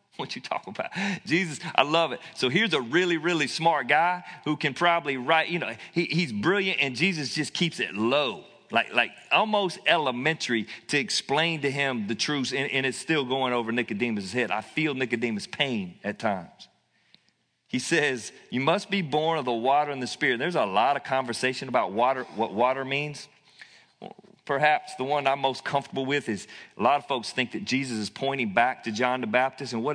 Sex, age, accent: male, 40-59, American